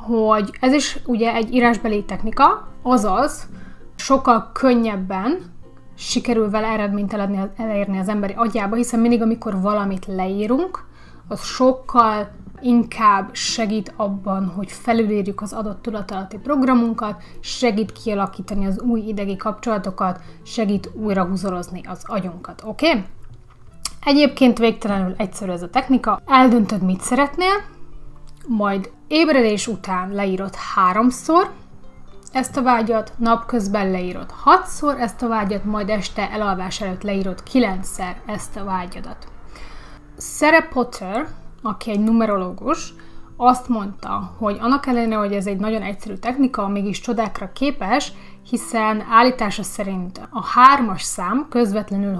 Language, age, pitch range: Hungarian, 30-49, 195-240 Hz